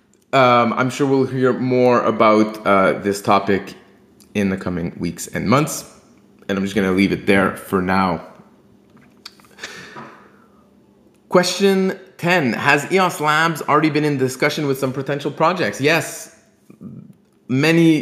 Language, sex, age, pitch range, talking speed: English, male, 30-49, 110-150 Hz, 135 wpm